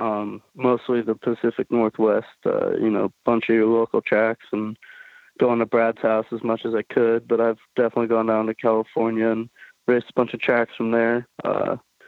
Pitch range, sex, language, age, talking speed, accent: 110-125 Hz, male, English, 20-39, 200 wpm, American